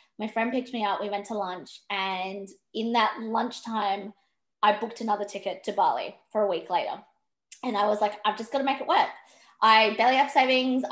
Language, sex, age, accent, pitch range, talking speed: English, female, 20-39, Australian, 205-250 Hz, 210 wpm